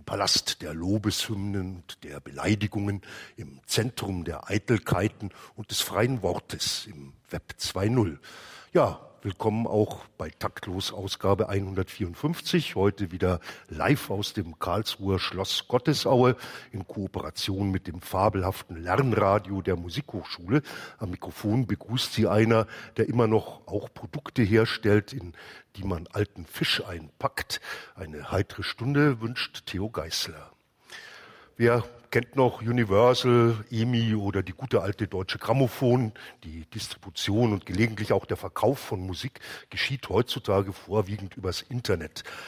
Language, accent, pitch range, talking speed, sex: German, German, 95-115 Hz, 125 wpm, male